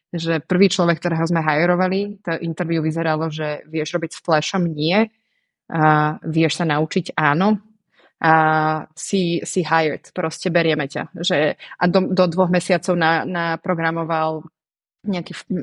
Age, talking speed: 20-39, 140 wpm